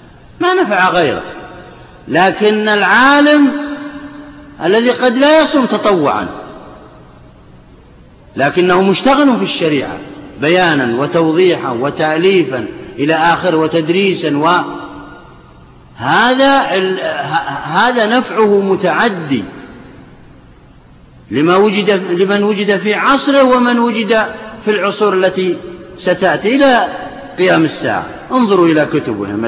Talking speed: 90 wpm